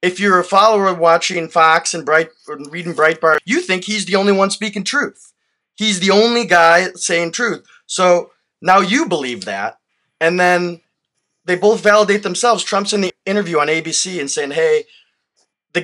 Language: English